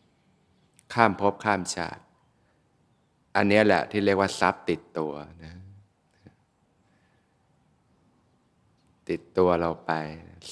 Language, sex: Thai, male